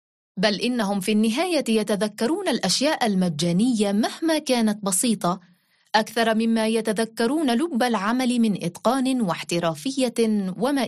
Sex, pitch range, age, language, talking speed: female, 180-245 Hz, 20-39, Arabic, 105 wpm